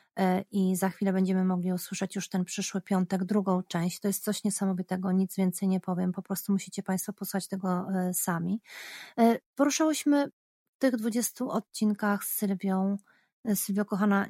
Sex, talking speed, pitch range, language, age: female, 145 wpm, 185-230 Hz, Polish, 30-49